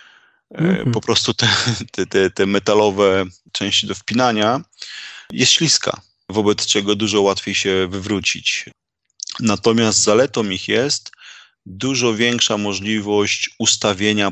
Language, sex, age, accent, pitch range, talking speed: Polish, male, 30-49, native, 95-115 Hz, 100 wpm